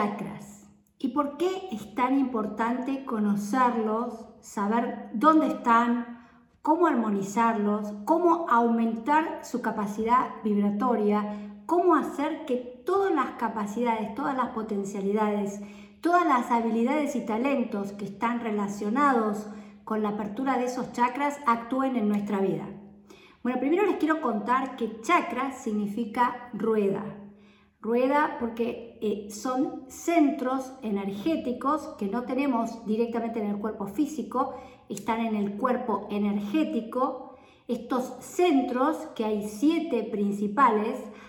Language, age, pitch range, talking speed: Spanish, 50-69, 210-265 Hz, 110 wpm